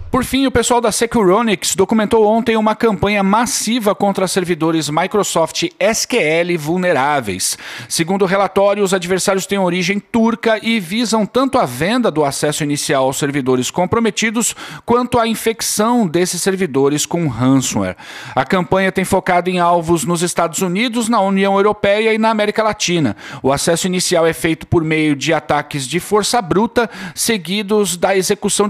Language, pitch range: Portuguese, 165-215 Hz